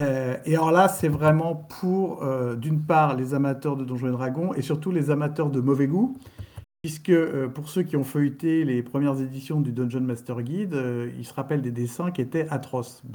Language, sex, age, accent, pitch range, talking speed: French, male, 50-69, French, 125-160 Hz, 200 wpm